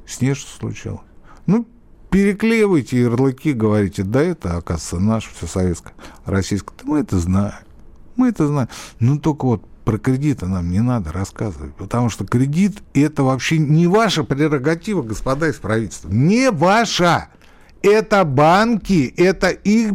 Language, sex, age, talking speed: Russian, male, 60-79, 140 wpm